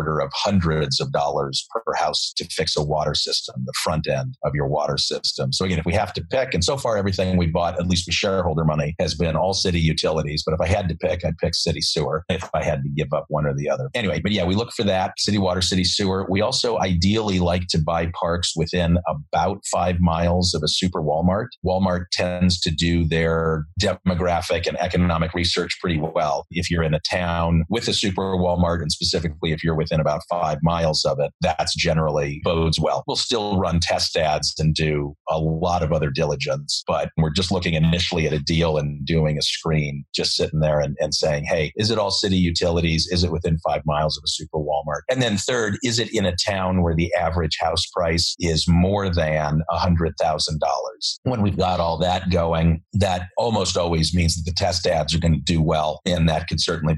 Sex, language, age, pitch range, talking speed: male, English, 40-59, 80-90 Hz, 215 wpm